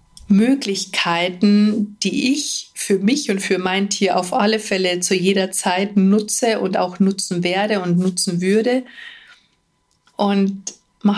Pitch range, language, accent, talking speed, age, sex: 180-210 Hz, German, German, 135 wpm, 50-69, female